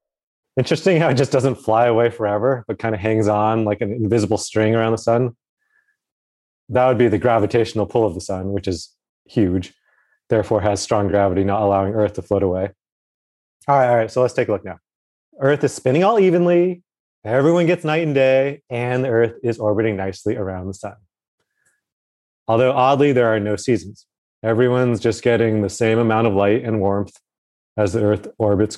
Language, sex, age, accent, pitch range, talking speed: English, male, 30-49, American, 100-125 Hz, 190 wpm